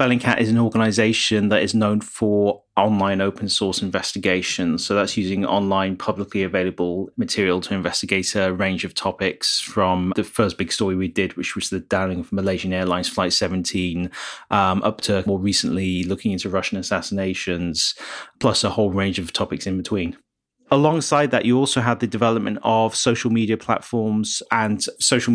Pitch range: 95-115 Hz